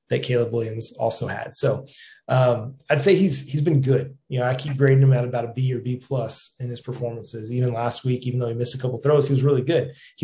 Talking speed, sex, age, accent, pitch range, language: 265 wpm, male, 30-49, American, 120-140 Hz, English